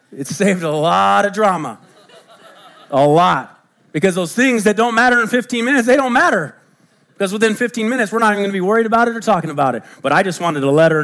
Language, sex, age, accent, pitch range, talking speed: English, male, 40-59, American, 145-225 Hz, 240 wpm